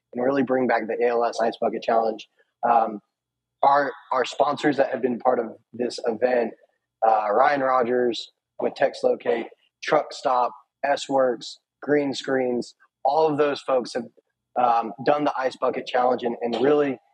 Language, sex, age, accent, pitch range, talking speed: English, male, 20-39, American, 120-140 Hz, 160 wpm